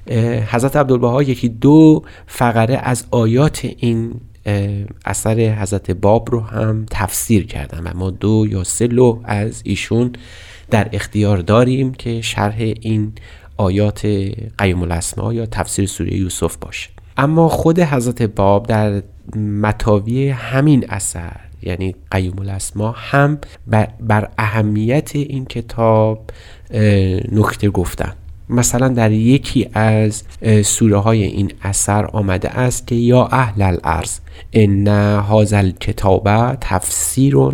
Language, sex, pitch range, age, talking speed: Persian, male, 100-120 Hz, 30-49, 115 wpm